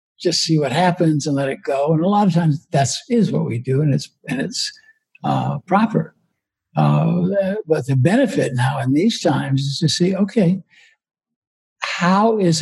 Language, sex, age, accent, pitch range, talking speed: English, male, 60-79, American, 140-190 Hz, 180 wpm